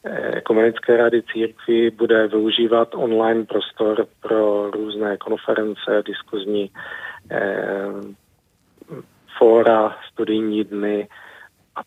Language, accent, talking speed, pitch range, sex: Czech, native, 80 wpm, 100-110 Hz, male